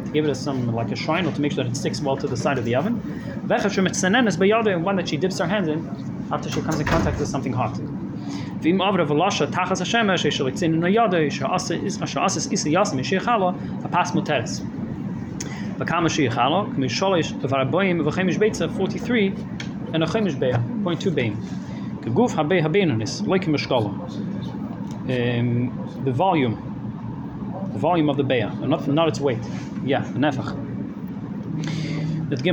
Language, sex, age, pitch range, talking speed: English, male, 30-49, 145-195 Hz, 75 wpm